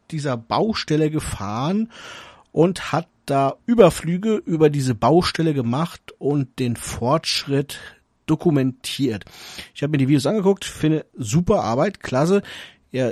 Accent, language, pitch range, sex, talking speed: German, German, 120-160 Hz, male, 120 wpm